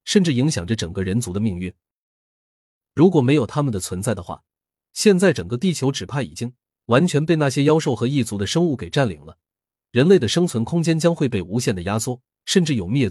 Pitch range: 100-150 Hz